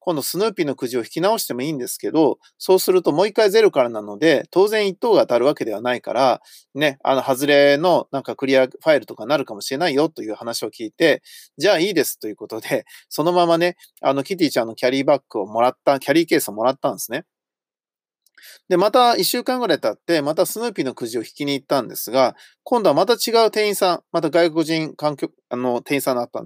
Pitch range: 135-225 Hz